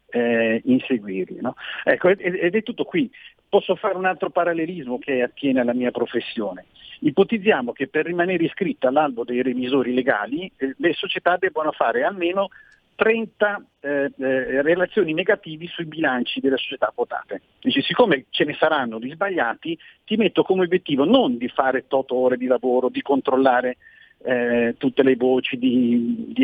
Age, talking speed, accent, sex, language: 50-69, 150 wpm, native, male, Italian